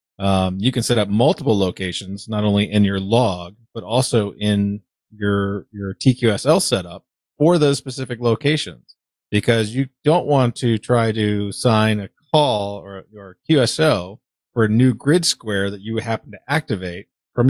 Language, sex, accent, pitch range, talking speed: English, male, American, 95-120 Hz, 160 wpm